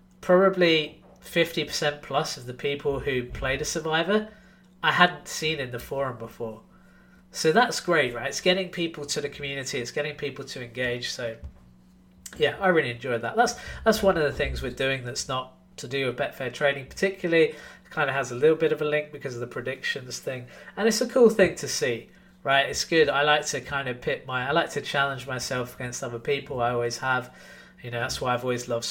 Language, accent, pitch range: English, British, 125-160 Hz